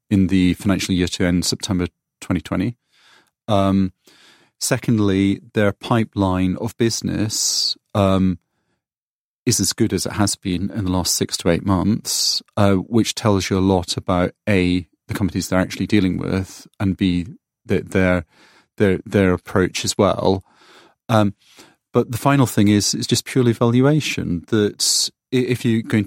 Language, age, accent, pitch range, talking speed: English, 30-49, British, 95-115 Hz, 150 wpm